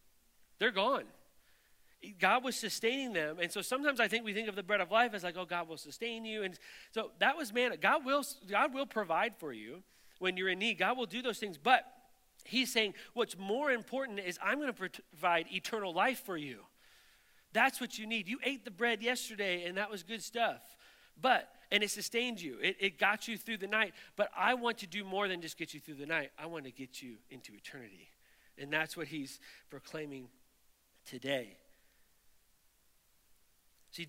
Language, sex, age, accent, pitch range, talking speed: English, male, 40-59, American, 140-215 Hz, 195 wpm